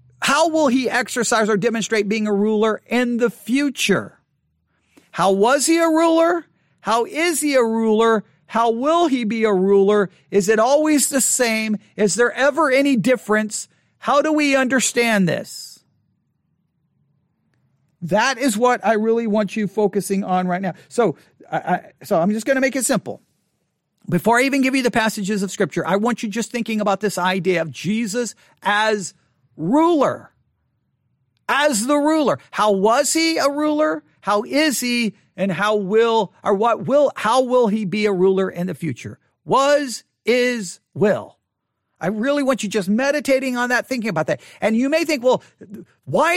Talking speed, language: 170 wpm, English